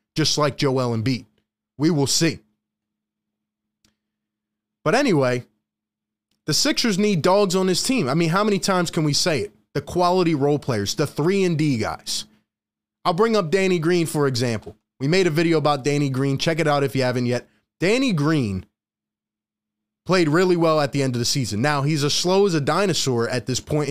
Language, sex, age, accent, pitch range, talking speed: English, male, 20-39, American, 110-165 Hz, 190 wpm